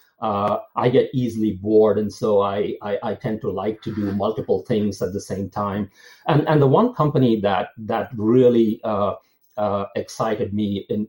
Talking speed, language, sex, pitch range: 185 wpm, English, male, 110-165 Hz